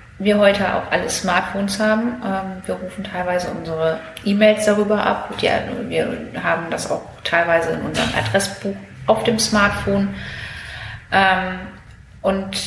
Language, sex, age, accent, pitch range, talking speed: German, female, 30-49, German, 180-215 Hz, 120 wpm